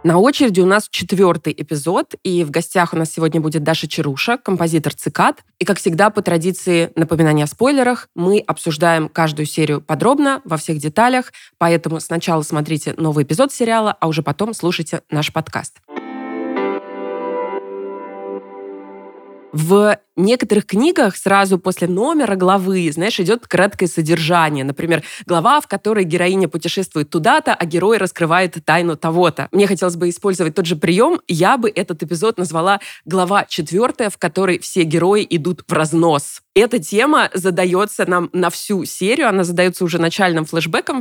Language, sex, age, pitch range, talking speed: Russian, female, 20-39, 160-195 Hz, 150 wpm